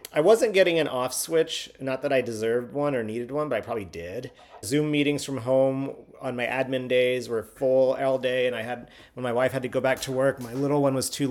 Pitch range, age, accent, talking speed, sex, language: 115-140 Hz, 40-59, American, 250 wpm, male, English